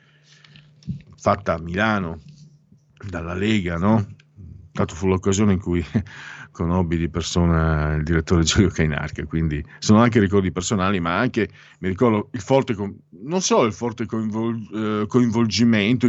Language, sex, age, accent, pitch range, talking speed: Italian, male, 50-69, native, 85-115 Hz, 125 wpm